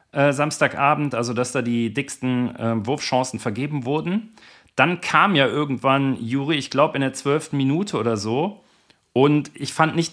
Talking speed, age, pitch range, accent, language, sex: 160 wpm, 40-59, 120-155 Hz, German, German, male